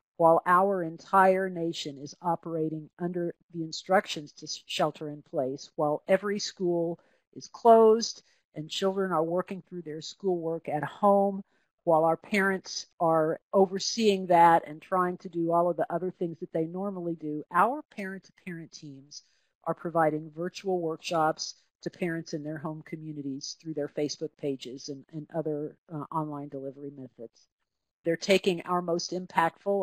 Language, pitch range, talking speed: English, 155-185 Hz, 145 wpm